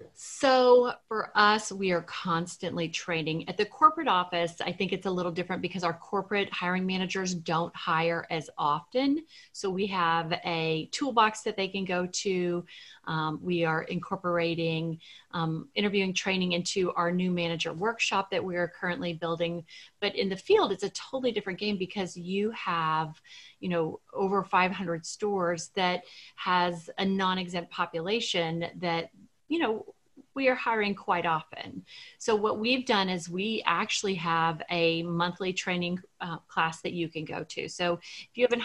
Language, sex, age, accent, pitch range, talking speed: English, female, 30-49, American, 170-200 Hz, 165 wpm